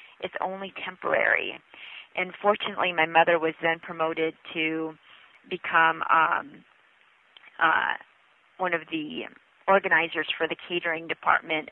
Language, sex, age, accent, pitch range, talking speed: English, female, 40-59, American, 160-185 Hz, 115 wpm